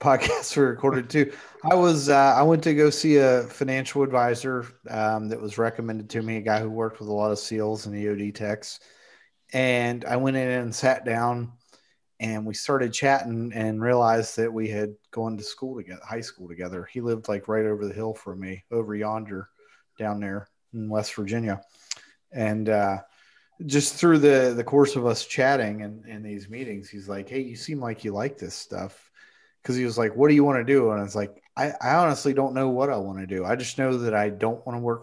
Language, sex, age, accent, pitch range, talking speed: English, male, 30-49, American, 105-130 Hz, 220 wpm